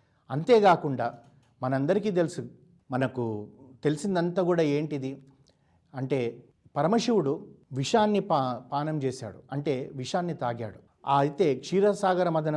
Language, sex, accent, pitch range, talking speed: Telugu, male, native, 125-165 Hz, 95 wpm